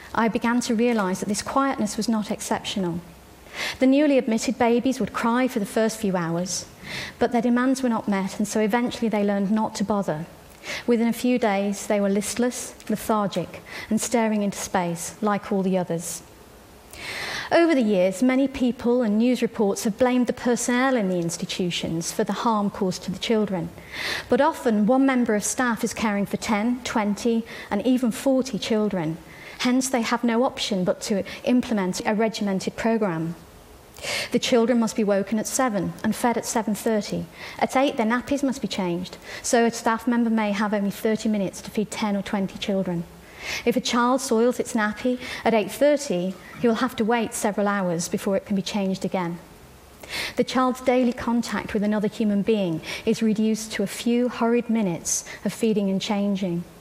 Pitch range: 200-240 Hz